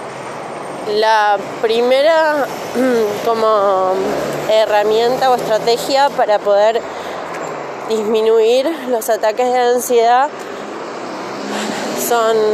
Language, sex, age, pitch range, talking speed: Spanish, female, 20-39, 205-245 Hz, 65 wpm